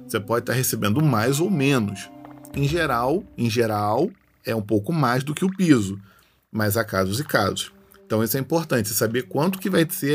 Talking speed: 200 wpm